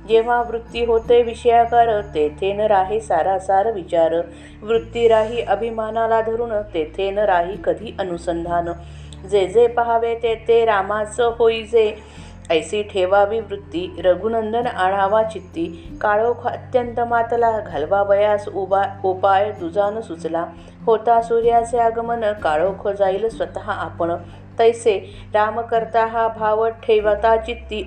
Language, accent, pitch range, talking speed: Marathi, native, 190-230 Hz, 110 wpm